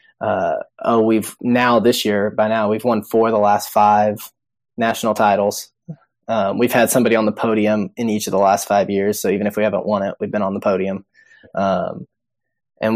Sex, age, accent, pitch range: male, 20-39, American, 105-120 Hz